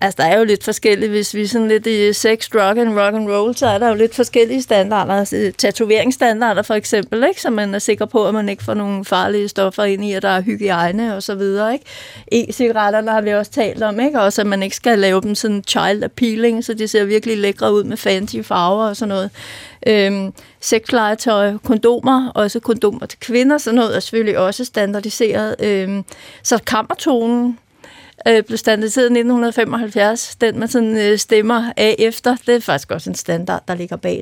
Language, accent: Danish, native